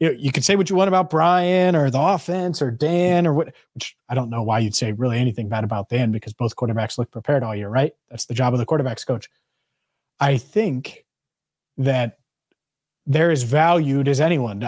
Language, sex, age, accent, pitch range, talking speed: English, male, 30-49, American, 125-165 Hz, 205 wpm